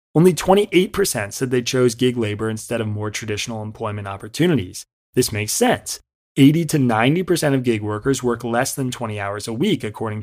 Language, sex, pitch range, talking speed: English, male, 110-140 Hz, 170 wpm